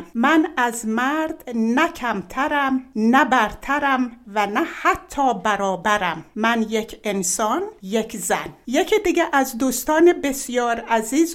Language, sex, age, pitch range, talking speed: Persian, female, 60-79, 210-290 Hz, 115 wpm